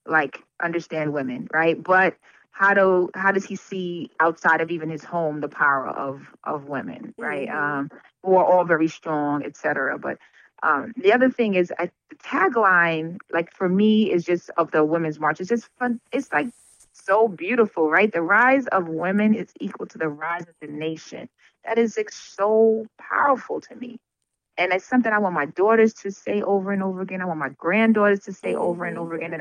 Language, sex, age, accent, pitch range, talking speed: English, female, 30-49, American, 165-225 Hz, 200 wpm